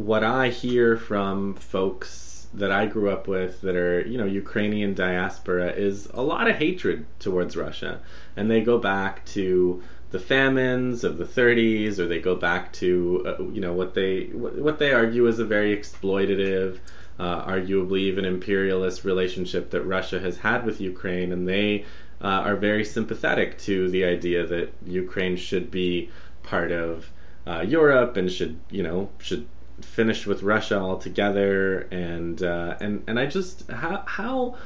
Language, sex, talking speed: English, male, 165 wpm